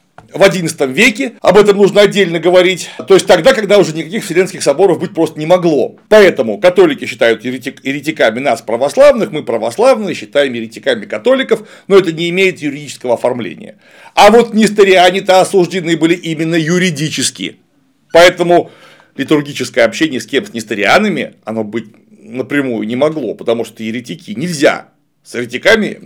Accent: native